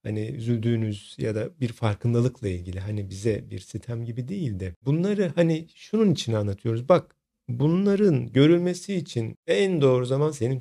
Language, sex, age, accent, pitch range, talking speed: Turkish, male, 50-69, native, 110-145 Hz, 155 wpm